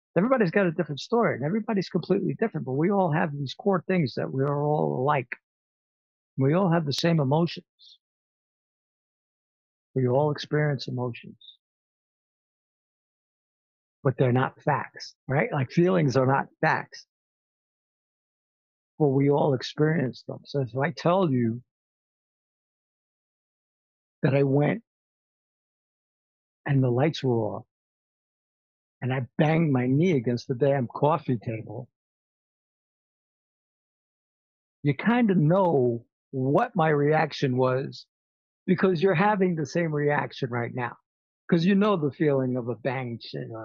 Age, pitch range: 60-79, 130-175 Hz